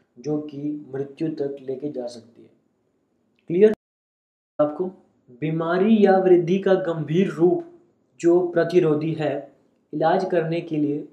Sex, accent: male, native